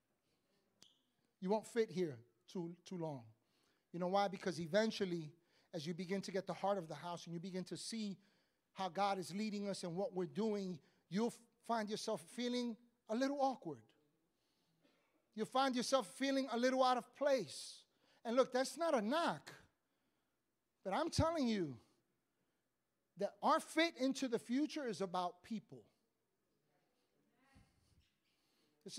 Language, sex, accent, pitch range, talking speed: English, male, American, 185-245 Hz, 150 wpm